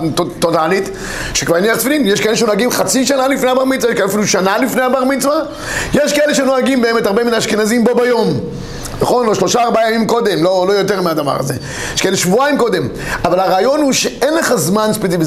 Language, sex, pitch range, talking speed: Hebrew, male, 185-250 Hz, 175 wpm